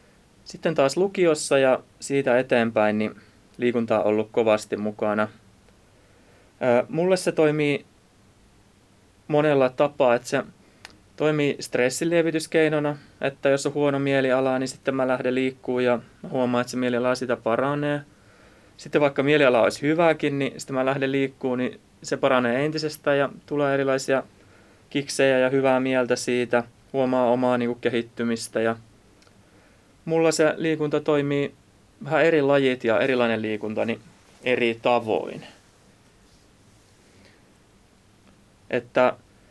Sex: male